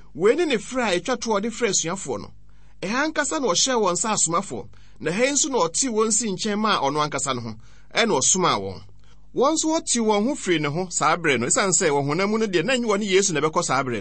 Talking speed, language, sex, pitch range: 190 wpm, English, male, 135-210 Hz